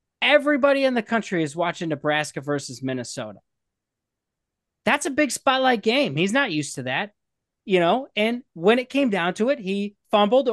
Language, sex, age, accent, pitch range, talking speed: English, male, 20-39, American, 185-255 Hz, 170 wpm